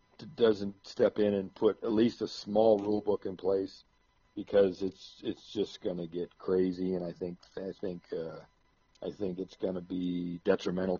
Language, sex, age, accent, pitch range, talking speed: English, male, 50-69, American, 90-100 Hz, 185 wpm